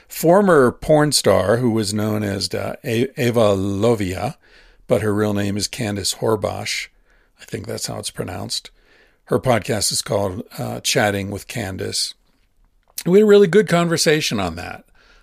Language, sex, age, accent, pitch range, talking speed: English, male, 50-69, American, 100-125 Hz, 155 wpm